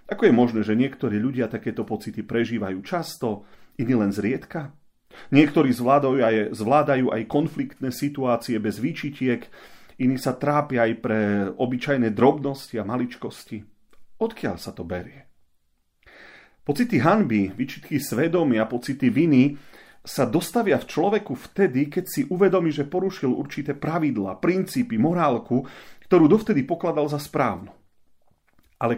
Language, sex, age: Slovak, male, 40-59